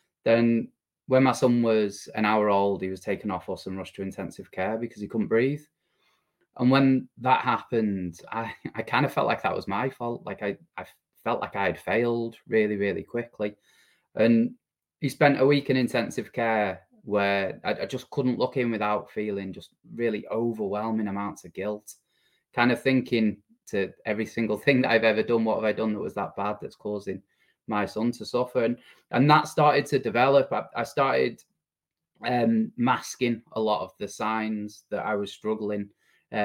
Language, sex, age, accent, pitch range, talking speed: English, male, 20-39, British, 100-120 Hz, 190 wpm